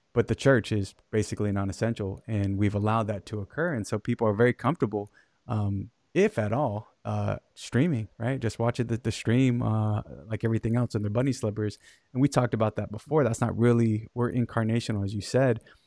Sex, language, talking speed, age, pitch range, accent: male, English, 195 wpm, 20-39, 110-125 Hz, American